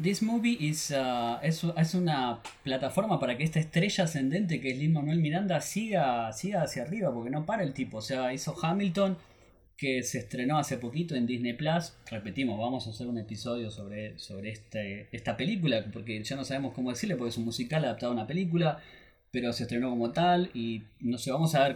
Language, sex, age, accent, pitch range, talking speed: Spanish, male, 20-39, Argentinian, 120-175 Hz, 205 wpm